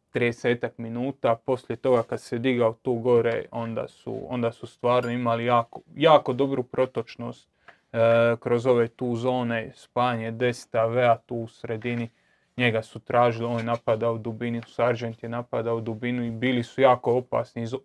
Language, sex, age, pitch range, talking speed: Croatian, male, 20-39, 120-130 Hz, 165 wpm